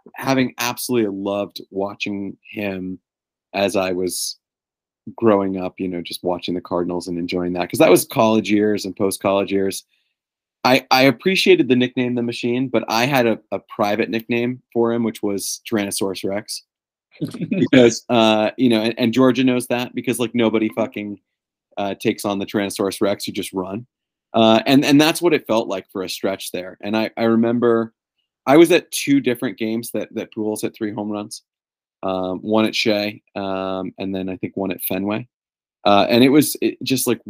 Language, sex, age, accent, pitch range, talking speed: English, male, 30-49, American, 95-120 Hz, 190 wpm